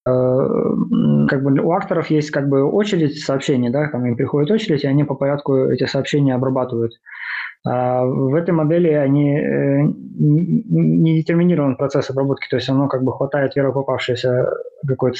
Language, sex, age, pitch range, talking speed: Russian, male, 20-39, 130-150 Hz, 160 wpm